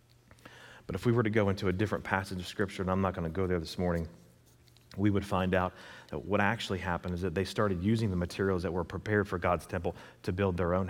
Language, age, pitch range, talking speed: English, 40-59, 95-120 Hz, 255 wpm